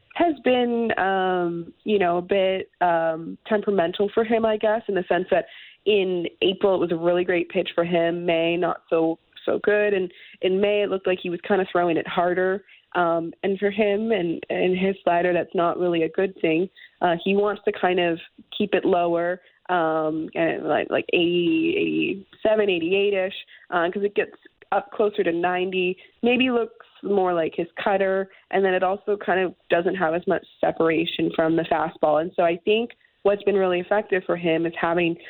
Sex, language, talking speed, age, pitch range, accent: female, English, 195 wpm, 20-39, 170-200 Hz, American